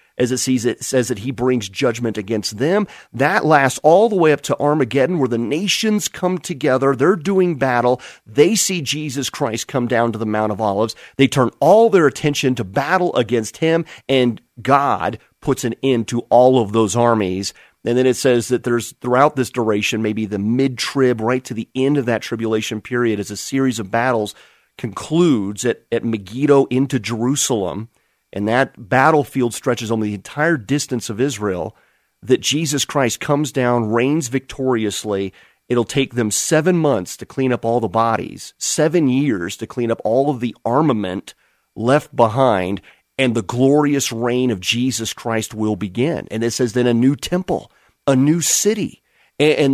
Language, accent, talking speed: English, American, 175 wpm